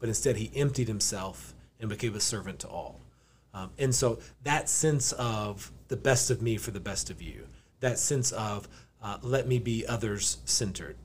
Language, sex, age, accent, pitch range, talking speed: English, male, 30-49, American, 100-125 Hz, 190 wpm